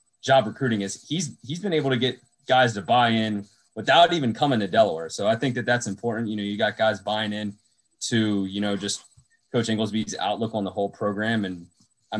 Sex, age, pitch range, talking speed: male, 20-39, 105-120 Hz, 215 wpm